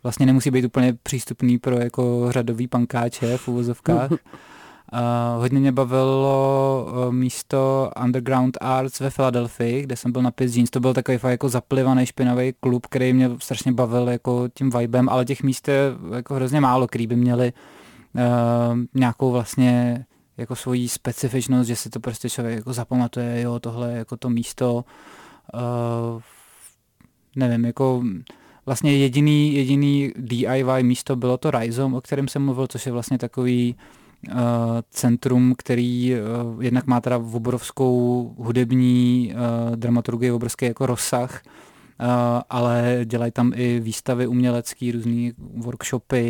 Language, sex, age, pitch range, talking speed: Czech, male, 20-39, 120-130 Hz, 145 wpm